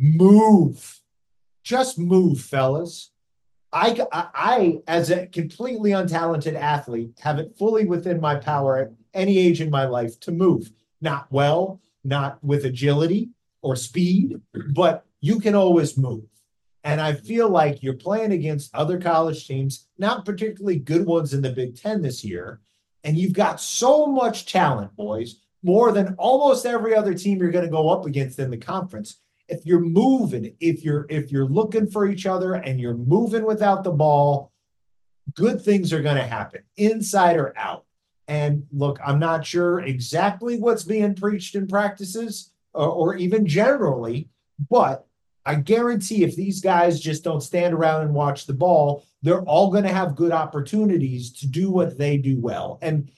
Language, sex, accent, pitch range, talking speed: English, male, American, 140-195 Hz, 165 wpm